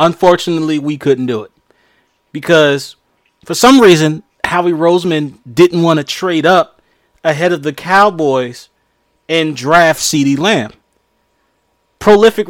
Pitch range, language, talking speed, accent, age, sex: 155-190 Hz, English, 120 wpm, American, 30-49, male